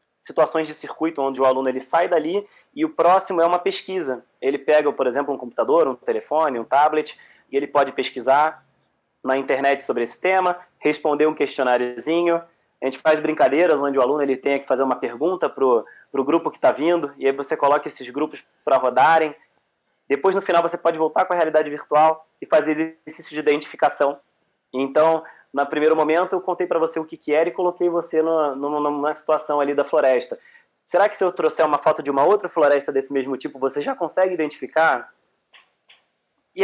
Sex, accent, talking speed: male, Brazilian, 200 wpm